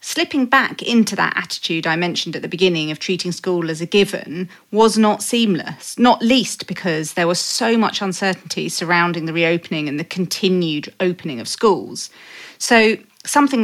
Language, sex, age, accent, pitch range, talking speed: English, female, 30-49, British, 175-230 Hz, 165 wpm